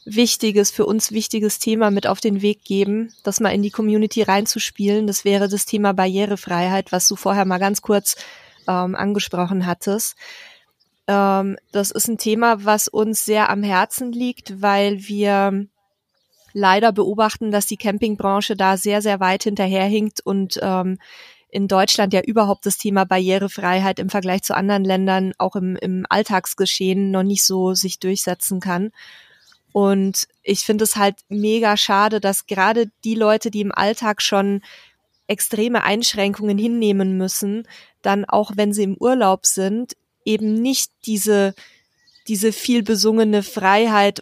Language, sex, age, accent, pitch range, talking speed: German, female, 20-39, German, 195-220 Hz, 150 wpm